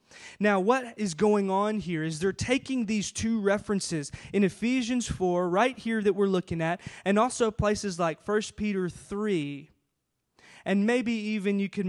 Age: 20-39